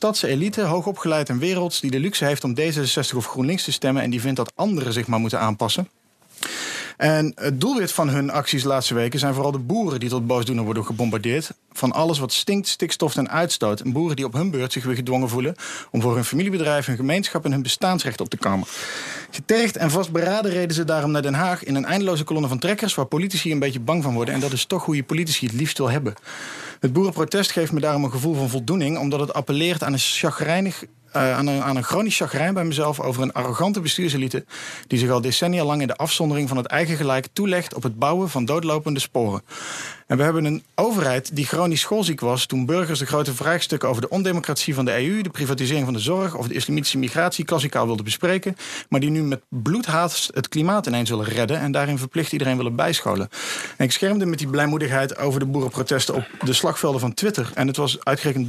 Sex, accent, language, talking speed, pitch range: male, Dutch, Dutch, 225 wpm, 130-170 Hz